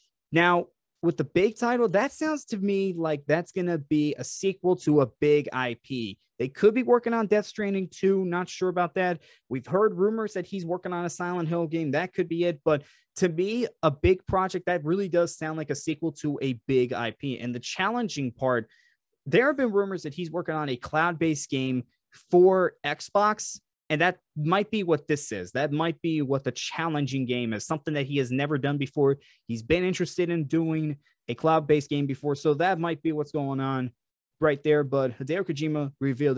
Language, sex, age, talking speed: English, male, 20-39, 205 wpm